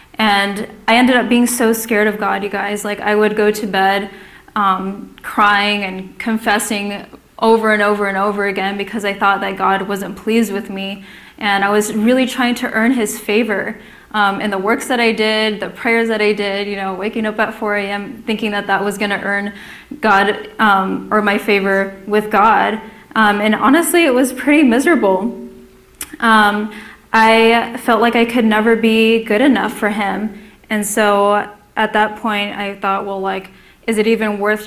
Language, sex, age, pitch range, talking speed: English, female, 10-29, 200-225 Hz, 190 wpm